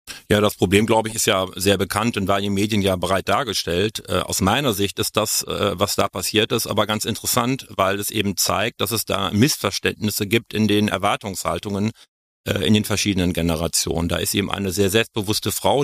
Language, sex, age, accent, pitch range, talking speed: German, male, 40-59, German, 95-110 Hz, 210 wpm